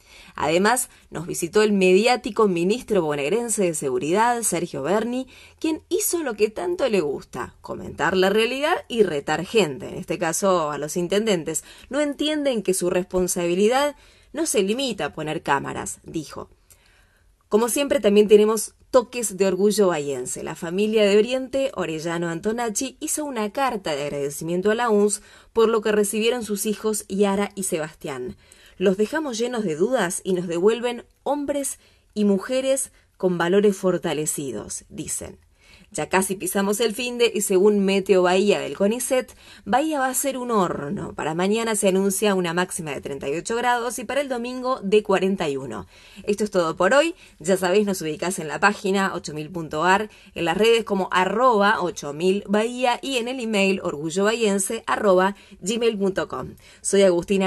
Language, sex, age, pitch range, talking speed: Spanish, female, 20-39, 180-235 Hz, 155 wpm